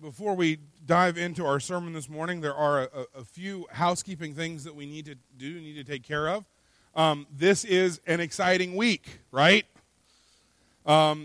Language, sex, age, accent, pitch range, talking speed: English, male, 40-59, American, 145-190 Hz, 175 wpm